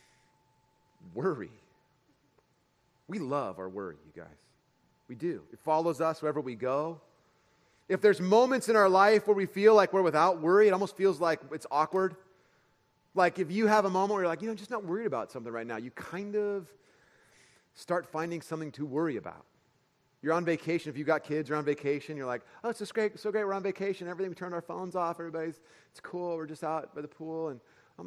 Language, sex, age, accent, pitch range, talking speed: English, male, 30-49, American, 160-220 Hz, 215 wpm